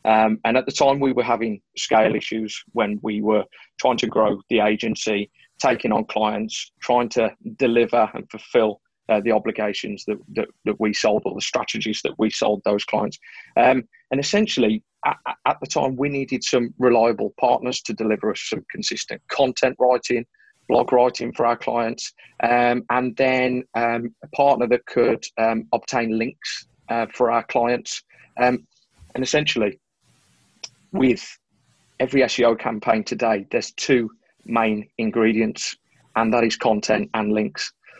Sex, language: male, English